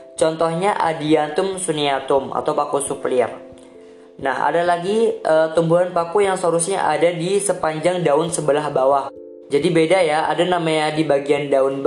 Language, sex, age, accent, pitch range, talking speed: Indonesian, female, 20-39, native, 135-170 Hz, 140 wpm